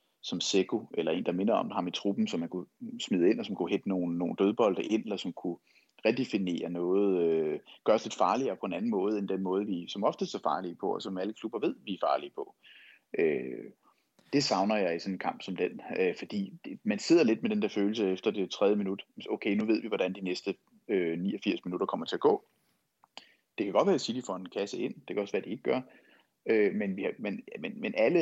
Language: Danish